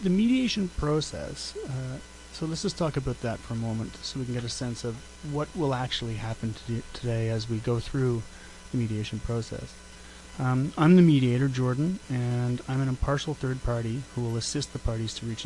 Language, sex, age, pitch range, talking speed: English, male, 30-49, 115-140 Hz, 195 wpm